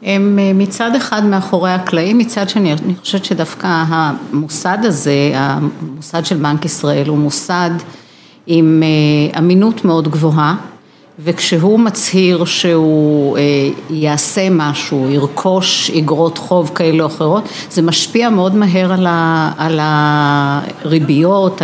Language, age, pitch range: Hebrew, 50-69, 155-195 Hz